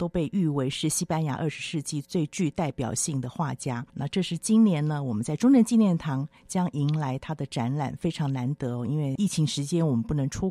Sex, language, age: female, Chinese, 50-69